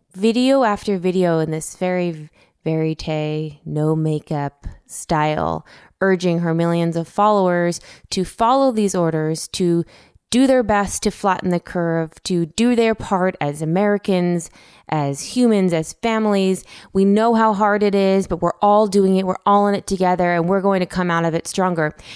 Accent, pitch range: American, 160-205 Hz